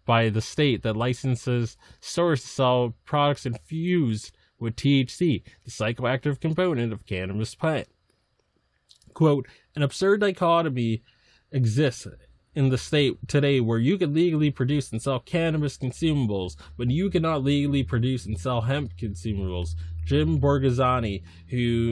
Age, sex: 20-39, male